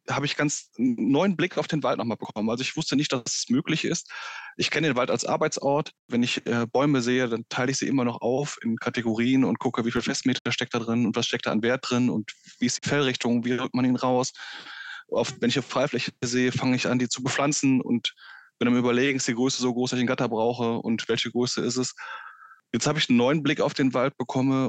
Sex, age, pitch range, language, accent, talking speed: male, 20-39, 120-145 Hz, German, German, 255 wpm